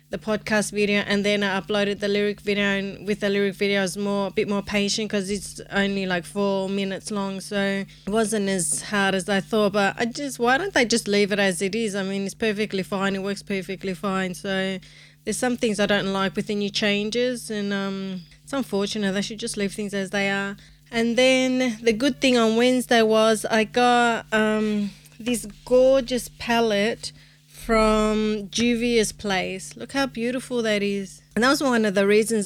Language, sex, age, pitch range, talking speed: English, female, 30-49, 195-225 Hz, 200 wpm